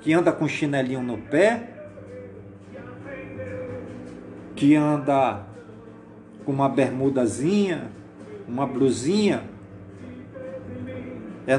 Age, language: 40-59, Portuguese